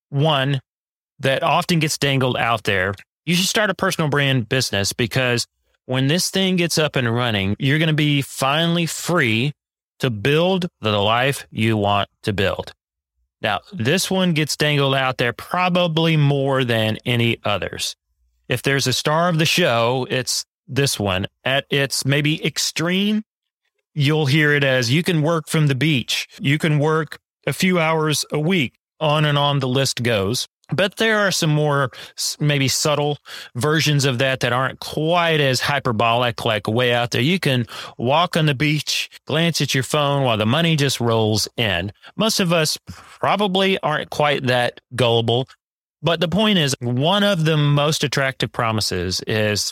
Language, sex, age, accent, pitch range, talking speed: English, male, 30-49, American, 120-160 Hz, 170 wpm